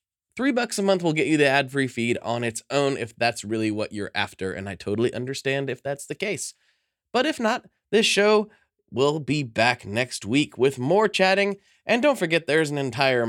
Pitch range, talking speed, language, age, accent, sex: 130-200 Hz, 210 wpm, English, 20-39, American, male